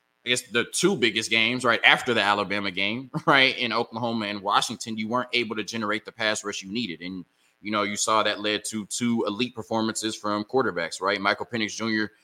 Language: English